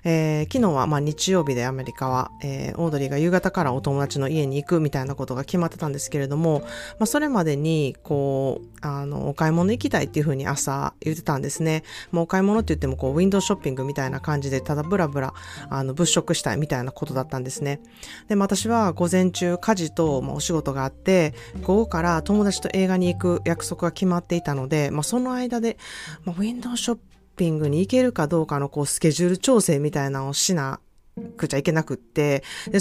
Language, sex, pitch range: Japanese, female, 140-190 Hz